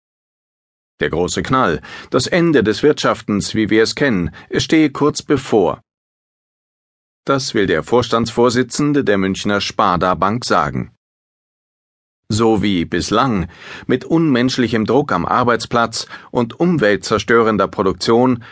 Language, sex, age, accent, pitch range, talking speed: German, male, 40-59, German, 110-130 Hz, 110 wpm